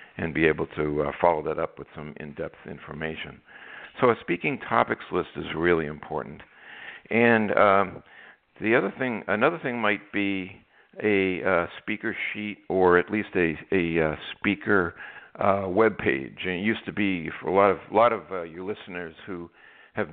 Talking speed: 175 wpm